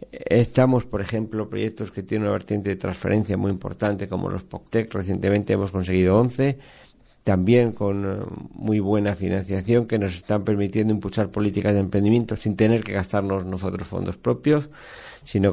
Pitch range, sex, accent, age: 100-120 Hz, male, Spanish, 50-69